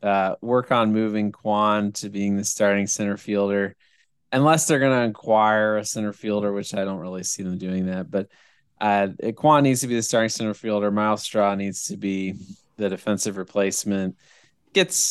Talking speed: 185 wpm